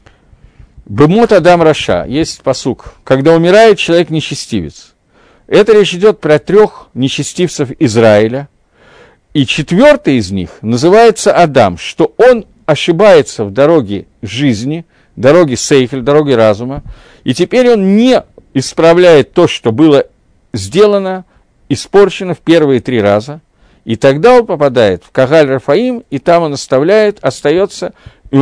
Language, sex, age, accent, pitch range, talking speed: Russian, male, 50-69, native, 115-170 Hz, 120 wpm